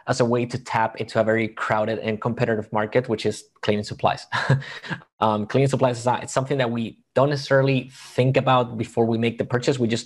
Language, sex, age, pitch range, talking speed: English, male, 20-39, 110-125 Hz, 215 wpm